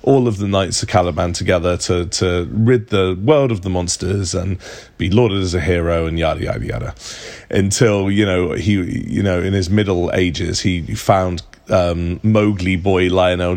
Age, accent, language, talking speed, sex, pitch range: 30-49, British, English, 180 wpm, male, 90-105 Hz